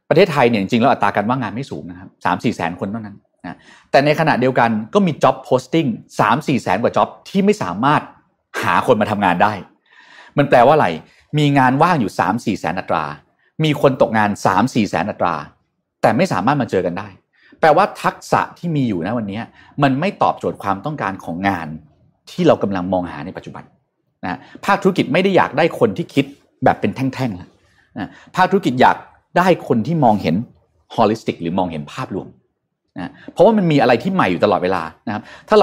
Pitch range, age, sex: 100-150 Hz, 30-49, male